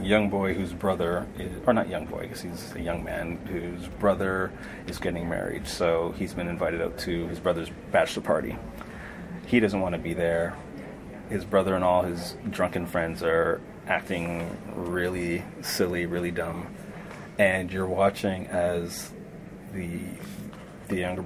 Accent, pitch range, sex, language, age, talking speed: American, 85-95 Hz, male, English, 30-49, 150 wpm